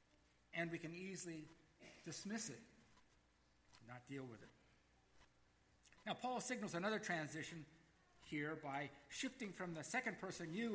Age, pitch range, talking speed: 50-69, 130-185 Hz, 130 wpm